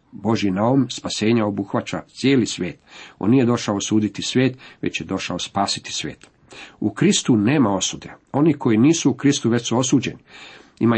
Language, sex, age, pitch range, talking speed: Croatian, male, 50-69, 105-130 Hz, 160 wpm